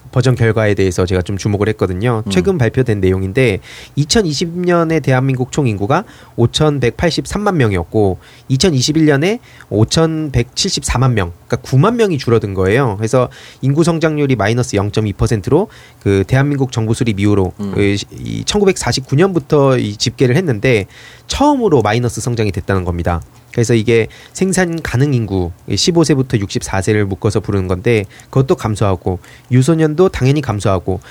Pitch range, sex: 110-150 Hz, male